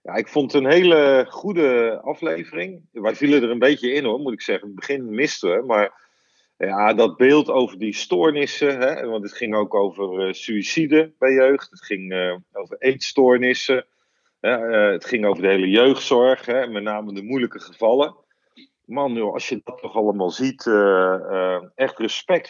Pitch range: 115-150 Hz